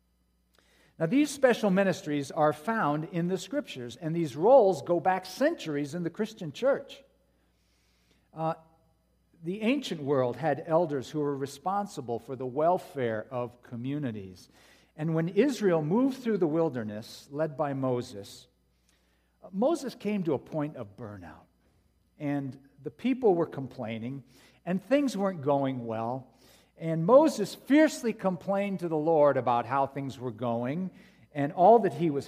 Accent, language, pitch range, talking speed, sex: American, English, 120-185 Hz, 145 wpm, male